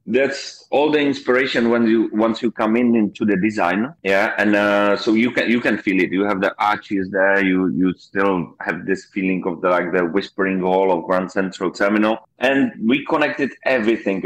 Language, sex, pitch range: English, male, 100-115 Hz